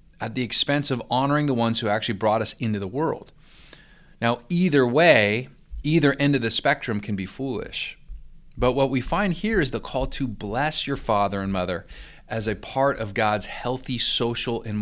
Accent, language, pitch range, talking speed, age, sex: American, English, 110-150 Hz, 190 wpm, 30-49, male